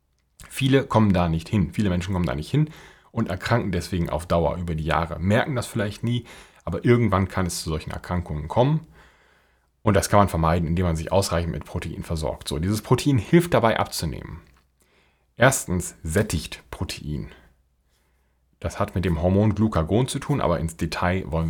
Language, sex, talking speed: German, male, 180 wpm